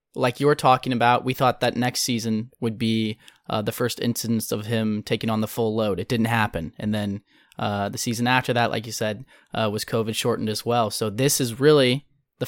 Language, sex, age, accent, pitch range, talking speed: English, male, 20-39, American, 110-130 Hz, 220 wpm